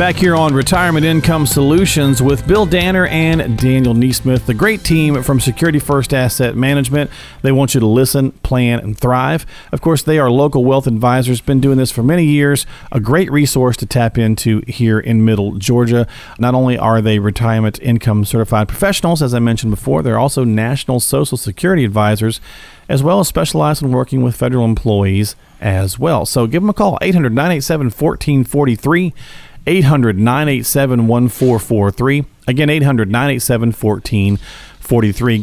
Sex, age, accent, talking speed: male, 40-59, American, 150 wpm